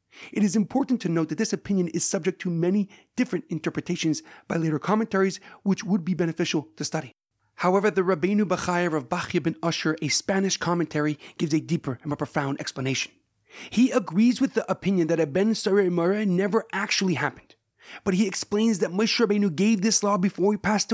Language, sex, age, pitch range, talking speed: English, male, 30-49, 180-220 Hz, 185 wpm